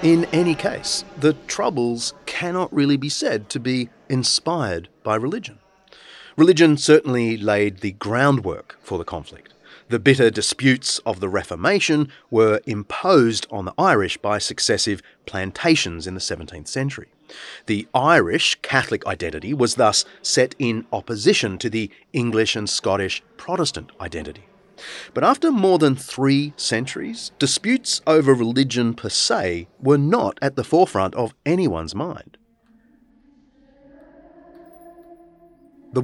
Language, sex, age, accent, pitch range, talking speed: English, male, 30-49, Australian, 110-170 Hz, 125 wpm